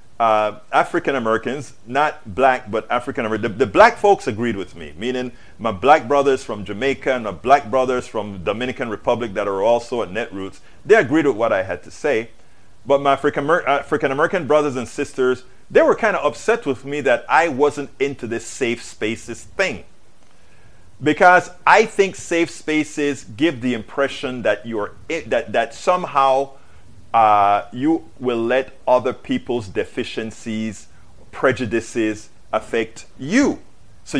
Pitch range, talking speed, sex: 110-145 Hz, 150 wpm, male